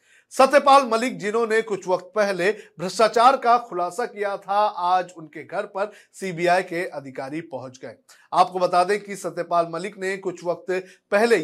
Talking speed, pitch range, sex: 155 wpm, 160-200 Hz, male